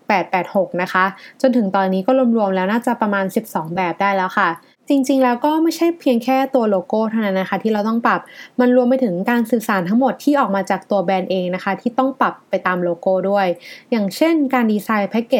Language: Thai